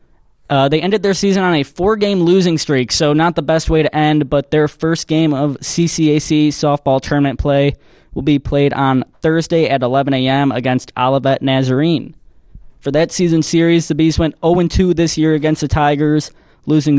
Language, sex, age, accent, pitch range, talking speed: English, male, 20-39, American, 130-155 Hz, 180 wpm